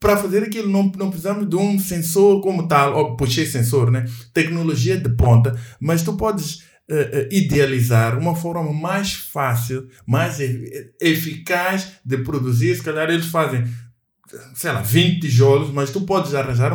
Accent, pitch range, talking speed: Brazilian, 135-195 Hz, 160 wpm